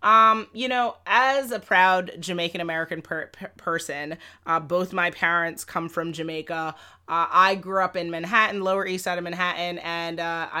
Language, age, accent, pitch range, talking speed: English, 30-49, American, 175-220 Hz, 160 wpm